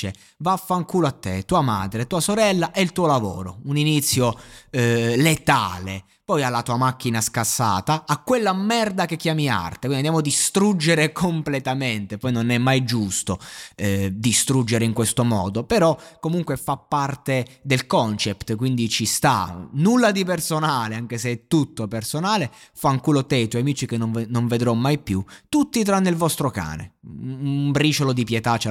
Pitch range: 110-150 Hz